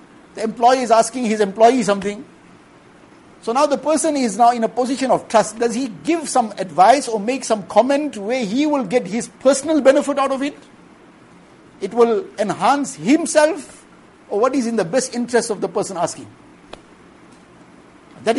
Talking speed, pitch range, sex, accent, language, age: 175 wpm, 210-270 Hz, male, Indian, English, 60-79